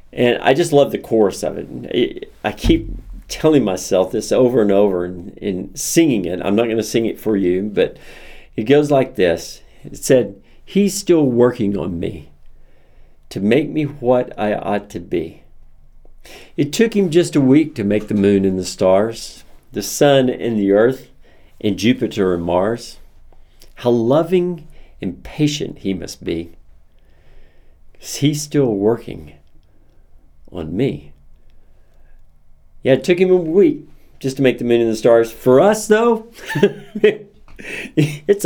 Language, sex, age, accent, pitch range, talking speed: English, male, 50-69, American, 100-160 Hz, 155 wpm